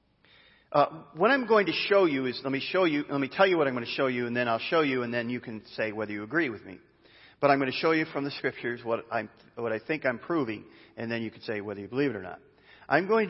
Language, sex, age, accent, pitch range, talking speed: English, male, 40-59, American, 120-180 Hz, 300 wpm